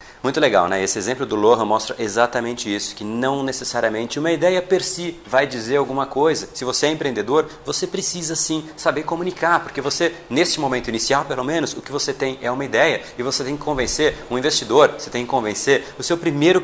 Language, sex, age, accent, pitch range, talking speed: Portuguese, male, 30-49, Brazilian, 125-165 Hz, 210 wpm